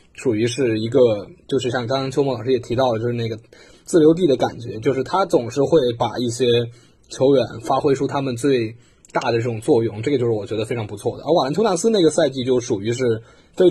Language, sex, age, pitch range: Chinese, male, 20-39, 120-165 Hz